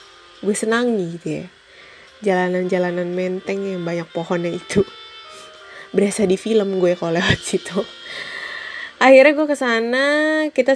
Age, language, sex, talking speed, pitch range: 20-39, Indonesian, female, 125 wpm, 180-225 Hz